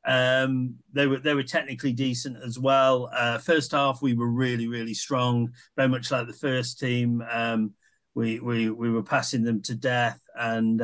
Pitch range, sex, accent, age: 115-130 Hz, male, British, 40-59